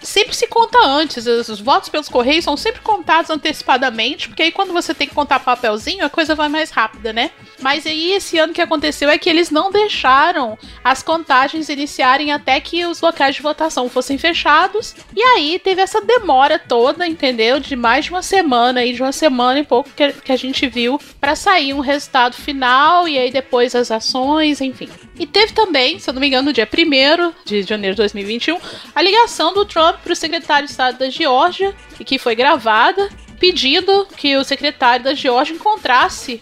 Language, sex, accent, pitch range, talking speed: Portuguese, female, Brazilian, 255-340 Hz, 195 wpm